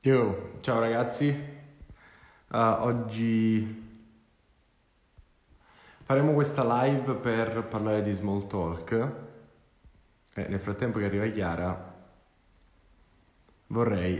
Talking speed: 85 wpm